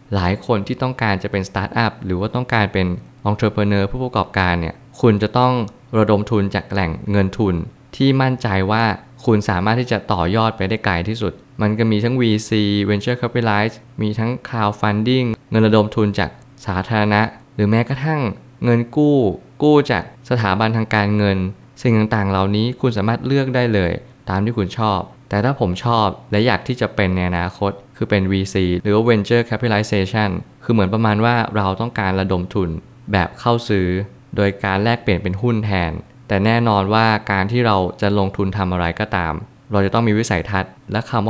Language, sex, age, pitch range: Thai, male, 20-39, 100-115 Hz